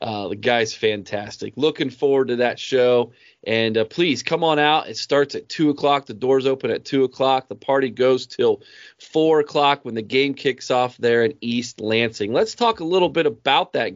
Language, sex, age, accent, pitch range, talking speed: English, male, 30-49, American, 125-160 Hz, 205 wpm